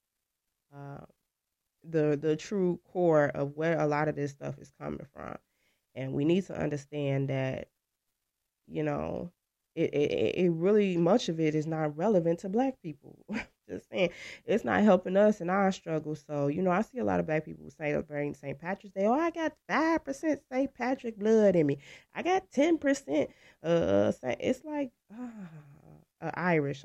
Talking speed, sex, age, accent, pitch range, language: 175 wpm, female, 20-39, American, 140-180 Hz, English